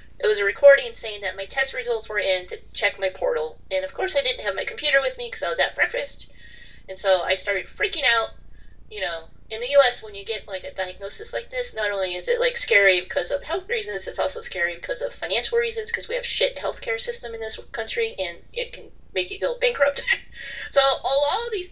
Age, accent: 30-49, American